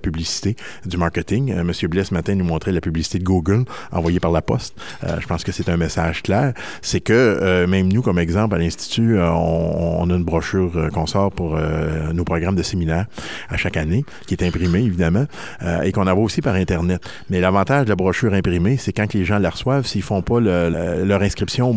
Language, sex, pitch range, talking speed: French, male, 85-100 Hz, 235 wpm